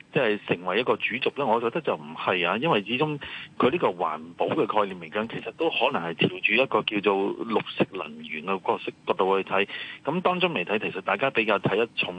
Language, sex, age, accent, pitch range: Chinese, male, 30-49, native, 95-125 Hz